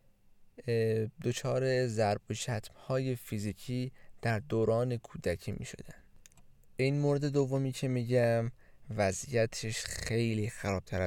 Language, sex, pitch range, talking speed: Persian, male, 105-135 Hz, 110 wpm